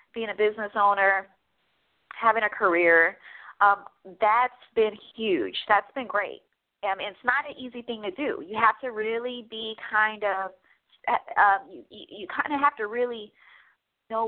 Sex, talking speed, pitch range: female, 160 wpm, 200-250 Hz